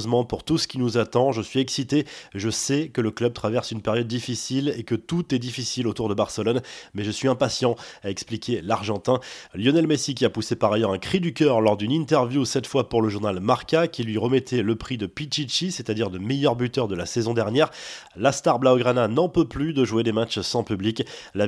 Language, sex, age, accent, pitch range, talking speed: French, male, 20-39, French, 115-140 Hz, 225 wpm